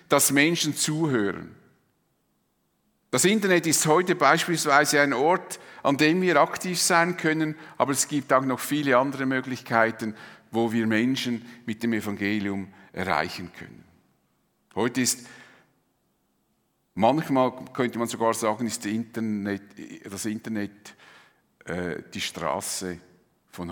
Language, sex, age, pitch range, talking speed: German, male, 50-69, 100-160 Hz, 120 wpm